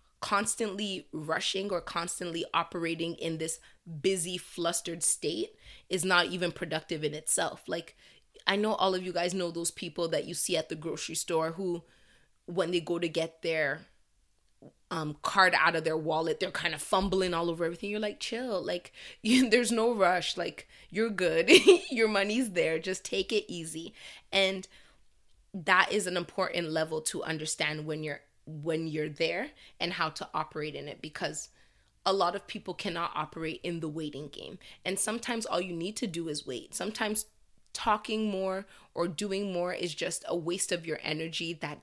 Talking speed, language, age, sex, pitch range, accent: 175 wpm, English, 20-39, female, 160-190 Hz, American